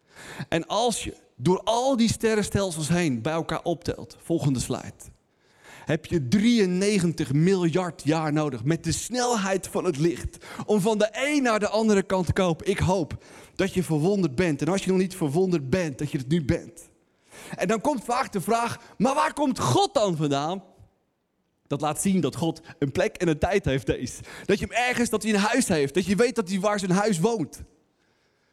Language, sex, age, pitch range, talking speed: Dutch, male, 30-49, 145-215 Hz, 200 wpm